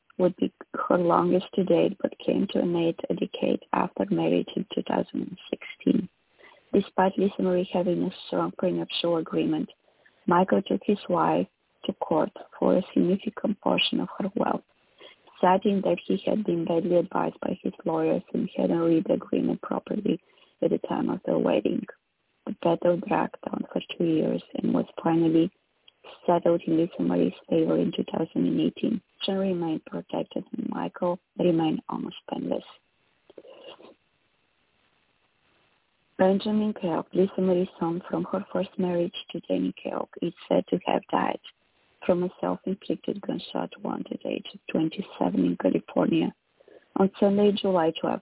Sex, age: female, 20-39